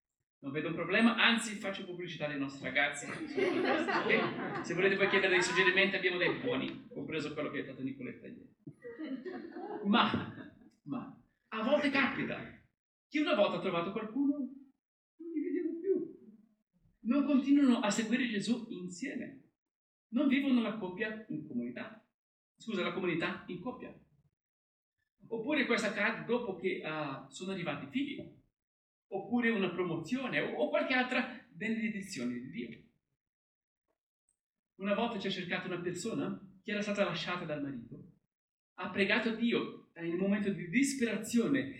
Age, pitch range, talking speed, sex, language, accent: 50-69, 185-255 Hz, 145 wpm, male, Italian, native